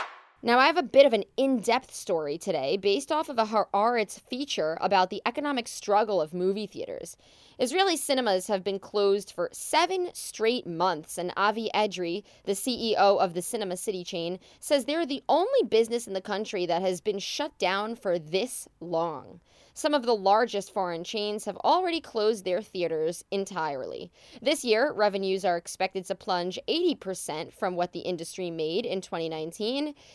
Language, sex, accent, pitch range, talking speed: English, female, American, 185-255 Hz, 170 wpm